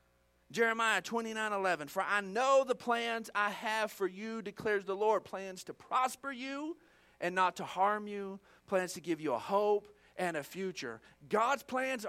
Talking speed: 175 wpm